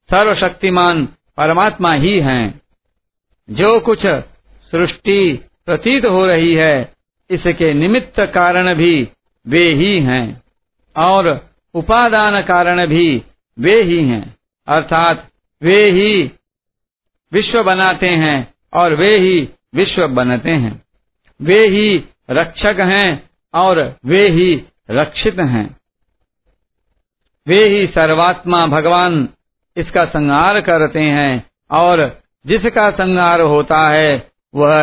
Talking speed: 105 wpm